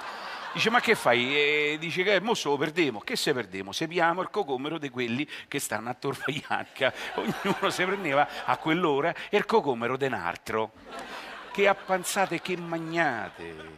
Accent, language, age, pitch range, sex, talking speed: native, Italian, 50-69, 125-180 Hz, male, 155 wpm